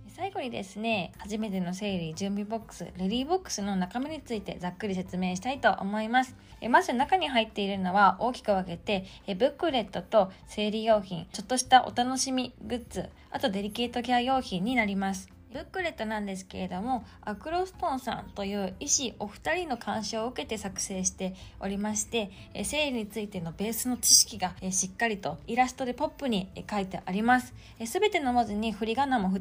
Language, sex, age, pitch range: Japanese, female, 20-39, 195-265 Hz